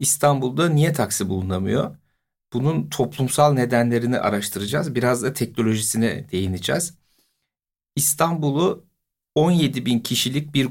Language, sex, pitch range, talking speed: Turkish, male, 115-145 Hz, 95 wpm